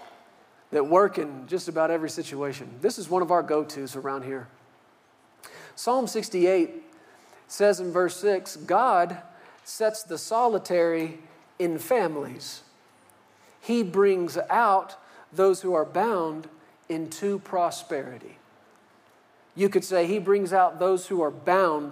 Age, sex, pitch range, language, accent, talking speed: 40-59, male, 175-245 Hz, English, American, 125 wpm